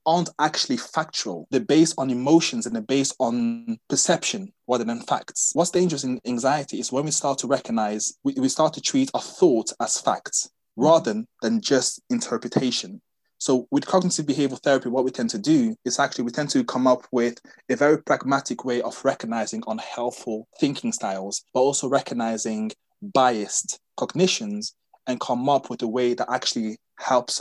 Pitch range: 120-175 Hz